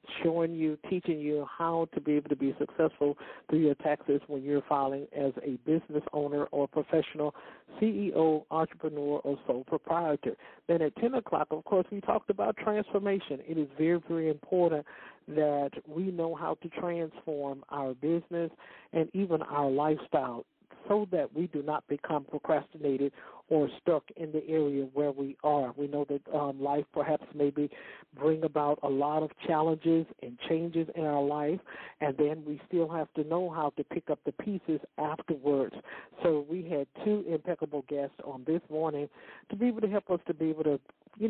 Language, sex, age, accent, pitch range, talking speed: English, male, 60-79, American, 145-165 Hz, 175 wpm